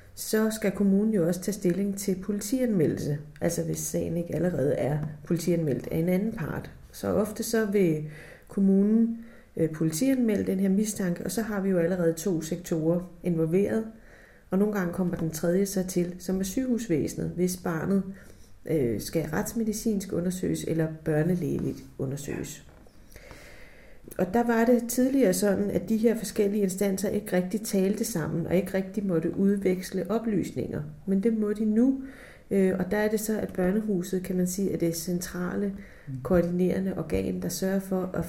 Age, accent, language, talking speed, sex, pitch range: 40-59, native, Danish, 160 wpm, female, 170-205 Hz